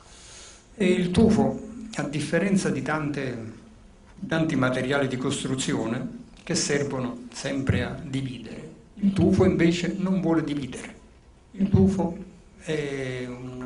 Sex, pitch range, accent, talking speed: male, 130-185 Hz, native, 110 wpm